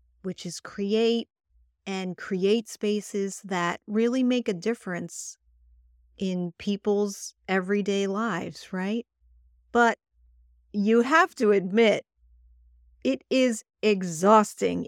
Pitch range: 175-225 Hz